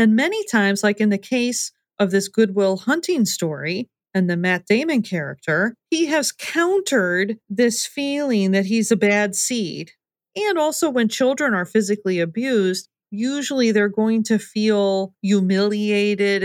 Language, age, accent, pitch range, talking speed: English, 40-59, American, 185-230 Hz, 145 wpm